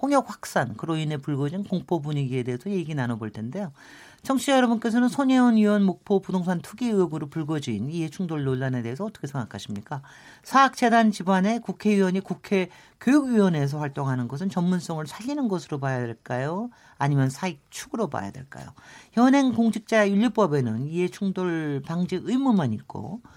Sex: male